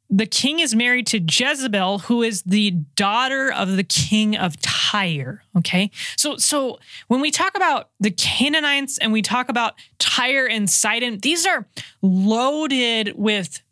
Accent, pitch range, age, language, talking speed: American, 195-260 Hz, 20-39, English, 155 wpm